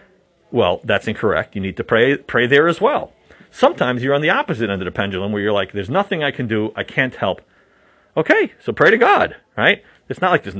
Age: 40-59